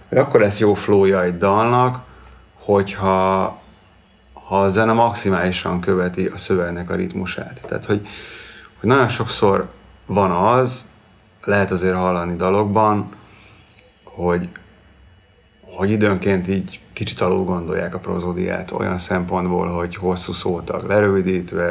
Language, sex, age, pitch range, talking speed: Hungarian, male, 30-49, 90-105 Hz, 115 wpm